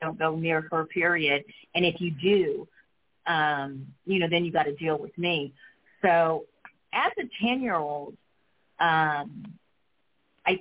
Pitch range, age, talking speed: 160-200 Hz, 50-69, 140 wpm